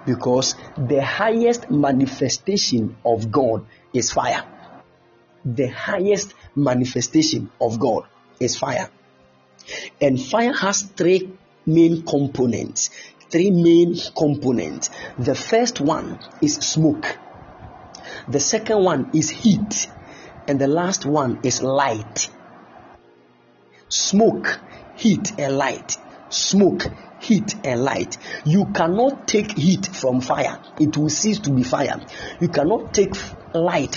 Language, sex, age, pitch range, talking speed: English, male, 50-69, 140-200 Hz, 115 wpm